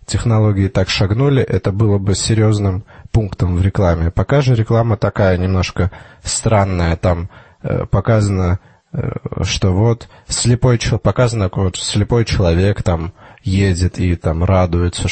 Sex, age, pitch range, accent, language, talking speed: male, 20-39, 95-120 Hz, native, Russian, 125 wpm